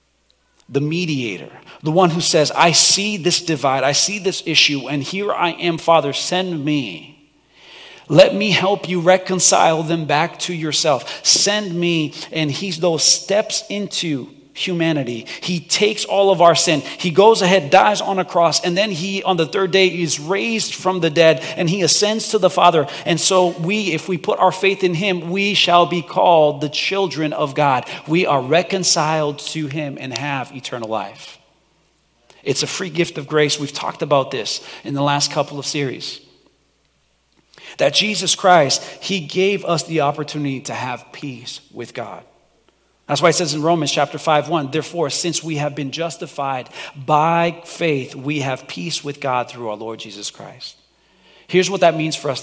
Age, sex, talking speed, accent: 40-59, male, 180 wpm, American